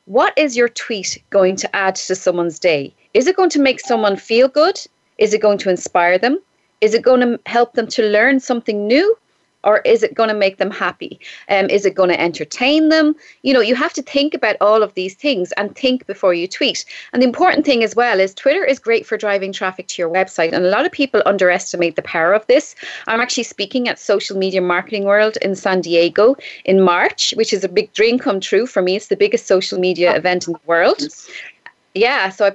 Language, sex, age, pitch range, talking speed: English, female, 30-49, 190-255 Hz, 230 wpm